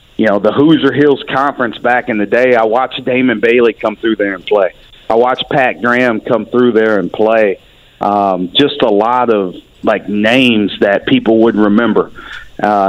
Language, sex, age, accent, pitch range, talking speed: English, male, 40-59, American, 105-120 Hz, 185 wpm